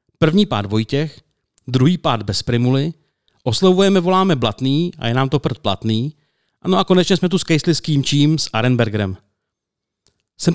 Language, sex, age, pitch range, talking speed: Czech, male, 40-59, 125-170 Hz, 165 wpm